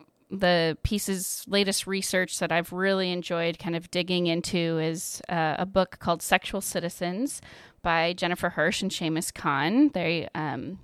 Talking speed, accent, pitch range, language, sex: 150 wpm, American, 175-215 Hz, English, female